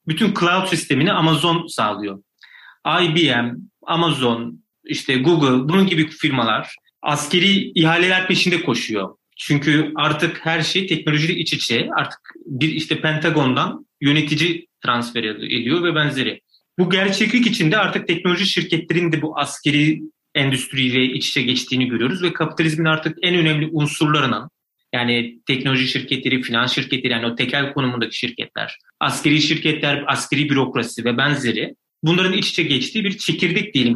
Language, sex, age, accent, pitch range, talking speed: Turkish, male, 30-49, native, 135-175 Hz, 135 wpm